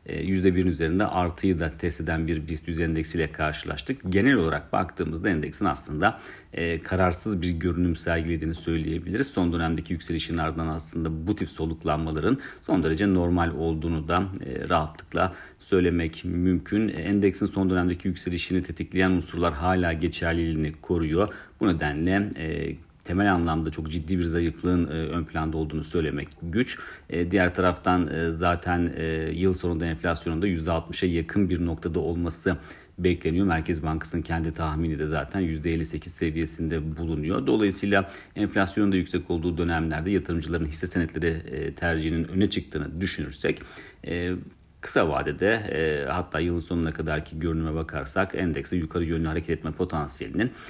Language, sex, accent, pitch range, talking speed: Turkish, male, native, 80-90 Hz, 130 wpm